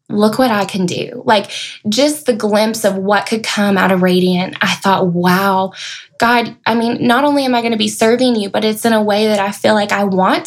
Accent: American